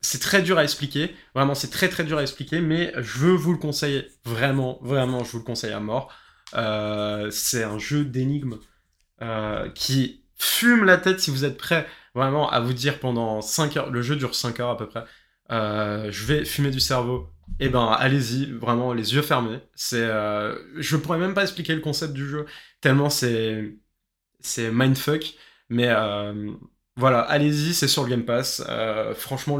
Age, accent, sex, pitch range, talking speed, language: 20-39, French, male, 115-150 Hz, 190 wpm, French